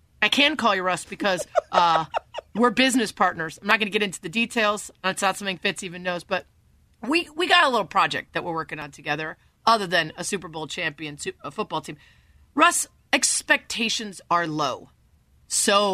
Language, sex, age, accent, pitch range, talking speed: English, female, 30-49, American, 180-260 Hz, 190 wpm